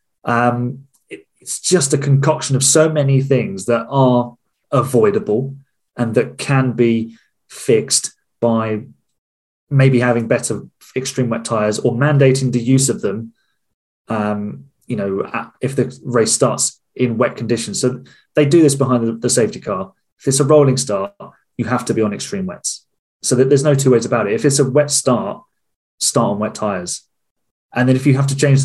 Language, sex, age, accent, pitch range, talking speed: English, male, 20-39, British, 115-140 Hz, 175 wpm